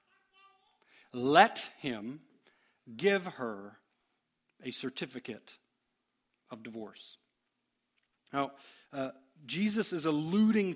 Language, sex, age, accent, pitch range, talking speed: English, male, 40-59, American, 140-190 Hz, 75 wpm